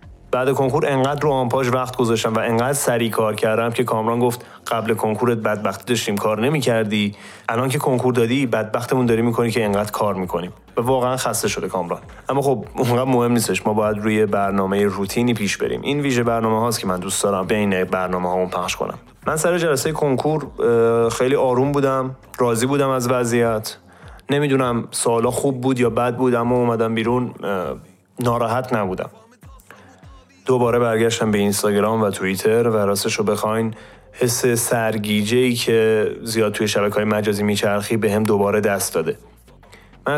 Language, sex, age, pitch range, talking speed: Persian, male, 30-49, 105-125 Hz, 170 wpm